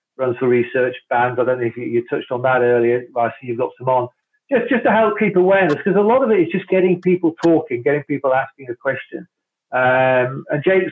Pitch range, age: 130-175 Hz, 40-59